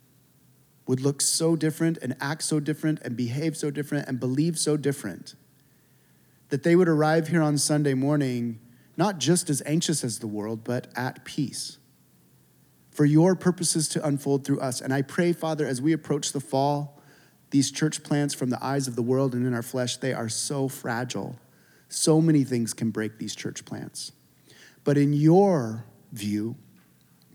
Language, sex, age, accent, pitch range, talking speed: English, male, 30-49, American, 120-145 Hz, 175 wpm